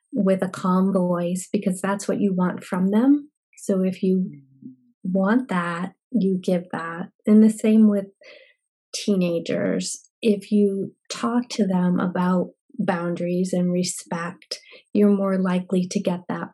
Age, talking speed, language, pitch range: 30-49, 140 wpm, English, 185-220 Hz